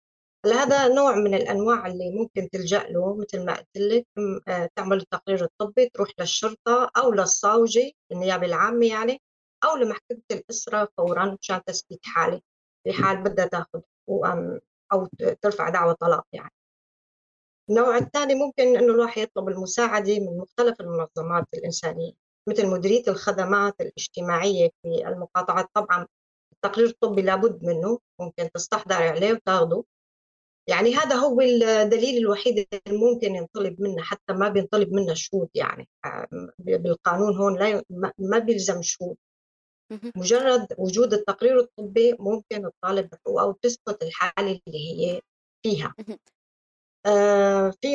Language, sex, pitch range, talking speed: Arabic, female, 185-235 Hz, 120 wpm